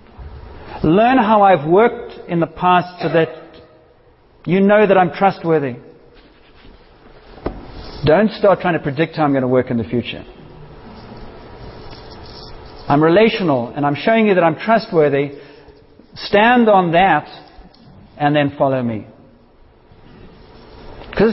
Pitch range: 150-210 Hz